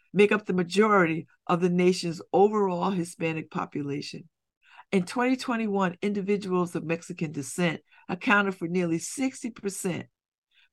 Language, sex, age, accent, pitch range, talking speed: English, female, 50-69, American, 170-225 Hz, 110 wpm